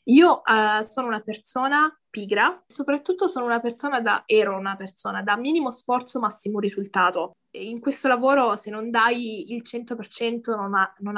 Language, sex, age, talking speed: Italian, female, 20-39, 150 wpm